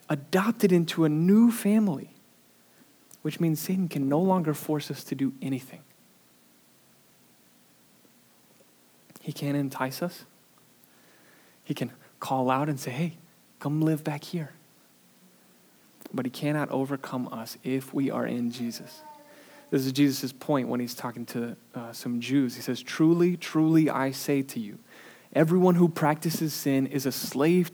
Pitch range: 125-160 Hz